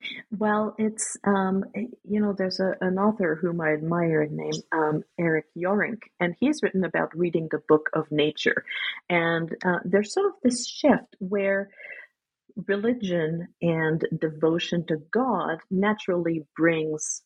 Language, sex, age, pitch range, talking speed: English, female, 50-69, 155-210 Hz, 140 wpm